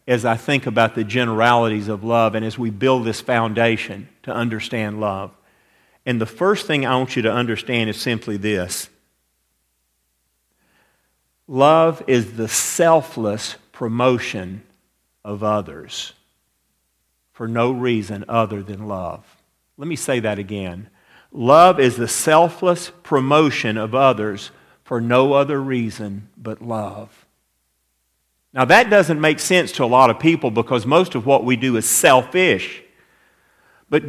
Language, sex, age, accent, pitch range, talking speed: English, male, 50-69, American, 105-140 Hz, 140 wpm